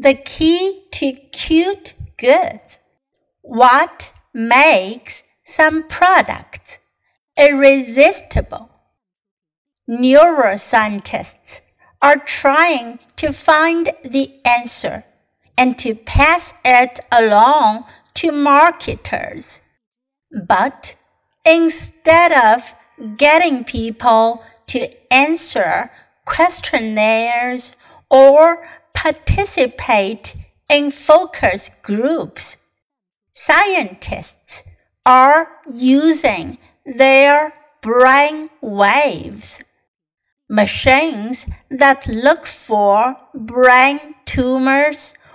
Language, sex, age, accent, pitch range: Chinese, female, 50-69, American, 240-310 Hz